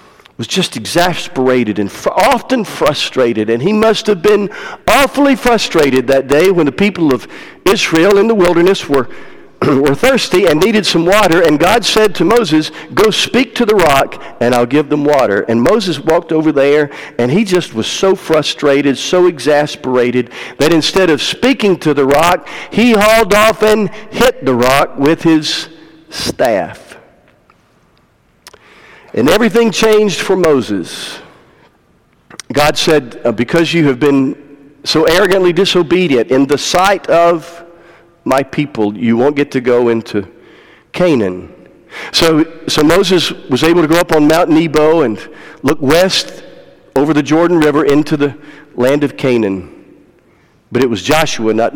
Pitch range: 135-190 Hz